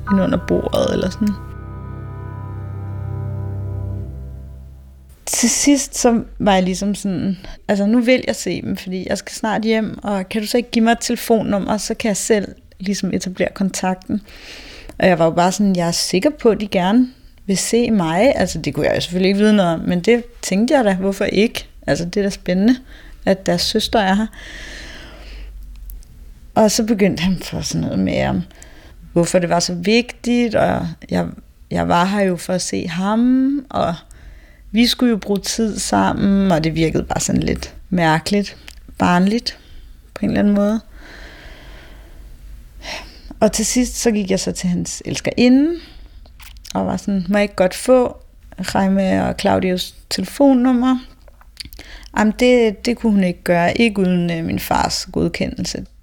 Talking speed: 170 wpm